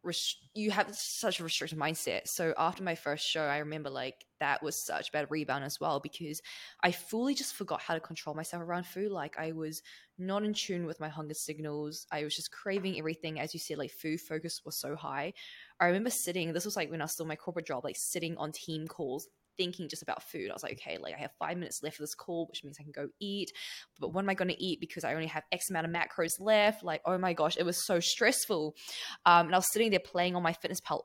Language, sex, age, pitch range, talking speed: English, female, 10-29, 155-185 Hz, 255 wpm